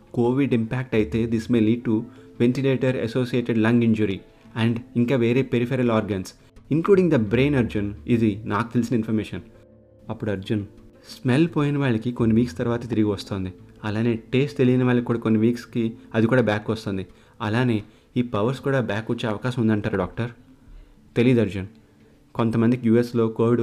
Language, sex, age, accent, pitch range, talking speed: Telugu, male, 30-49, native, 105-120 Hz, 150 wpm